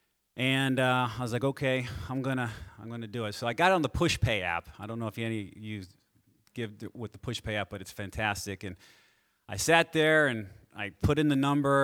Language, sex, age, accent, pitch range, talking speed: English, male, 30-49, American, 105-140 Hz, 235 wpm